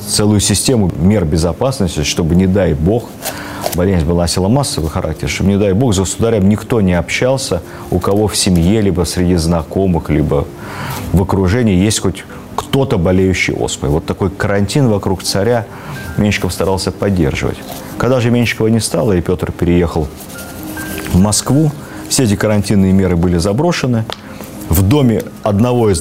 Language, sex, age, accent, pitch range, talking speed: Russian, male, 40-59, native, 85-110 Hz, 150 wpm